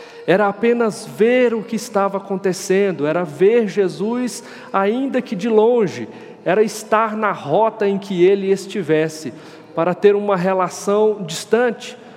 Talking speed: 135 wpm